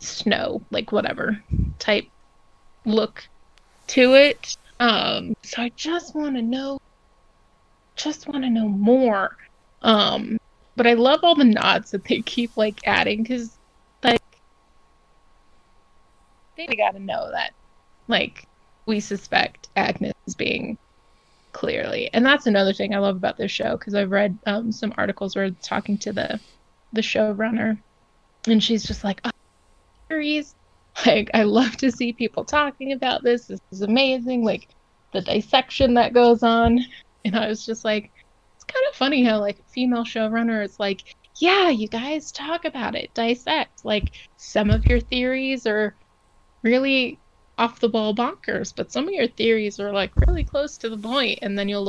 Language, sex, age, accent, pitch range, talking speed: English, female, 20-39, American, 210-260 Hz, 160 wpm